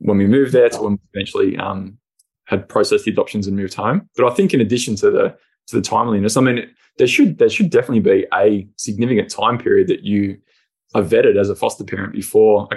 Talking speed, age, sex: 225 wpm, 20-39, male